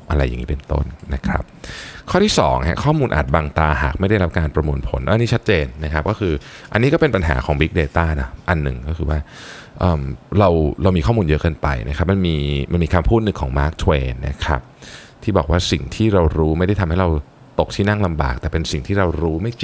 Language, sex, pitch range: Thai, male, 75-105 Hz